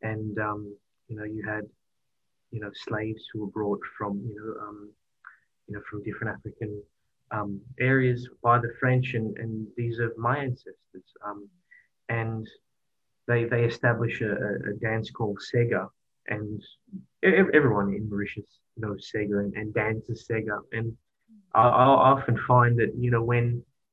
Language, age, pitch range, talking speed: English, 20-39, 110-125 Hz, 150 wpm